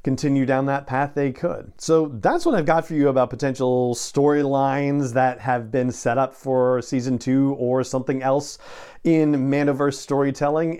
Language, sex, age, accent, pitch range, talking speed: English, male, 40-59, American, 125-160 Hz, 165 wpm